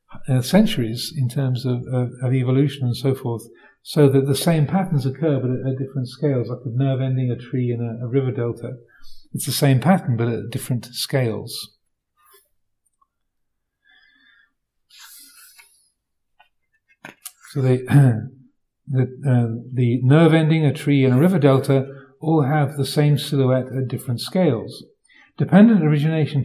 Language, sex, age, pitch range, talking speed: English, male, 50-69, 125-150 Hz, 140 wpm